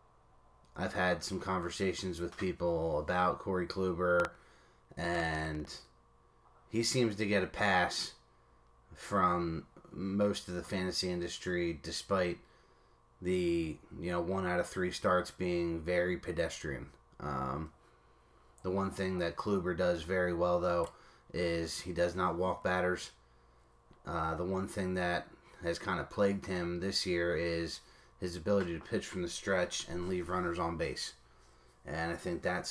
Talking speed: 145 wpm